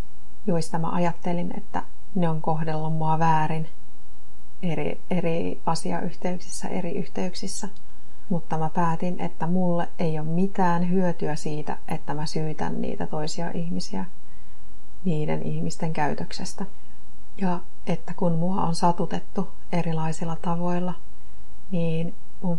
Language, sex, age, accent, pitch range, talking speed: Finnish, female, 30-49, native, 160-175 Hz, 115 wpm